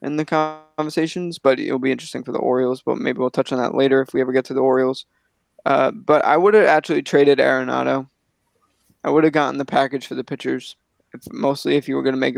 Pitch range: 135-160 Hz